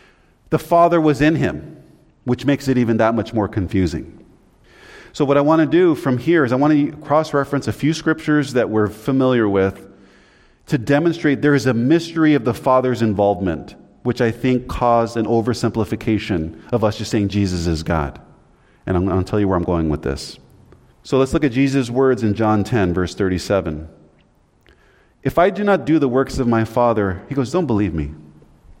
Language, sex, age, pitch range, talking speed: English, male, 40-59, 105-145 Hz, 195 wpm